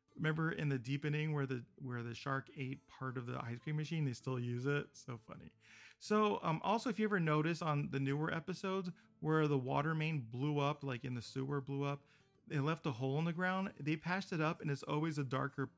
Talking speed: 230 wpm